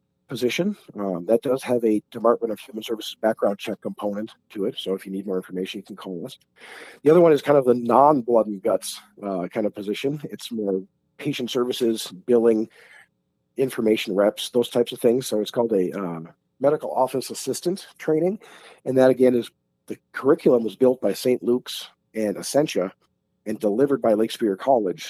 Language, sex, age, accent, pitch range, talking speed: English, male, 50-69, American, 105-130 Hz, 185 wpm